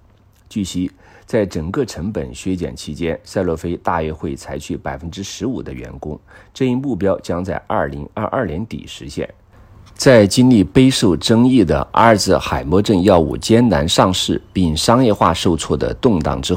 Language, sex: Chinese, male